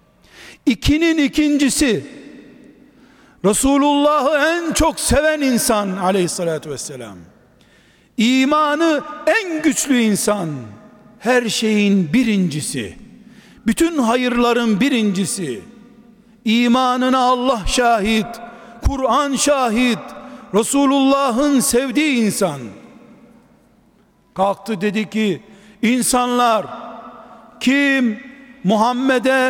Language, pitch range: Turkish, 225-275 Hz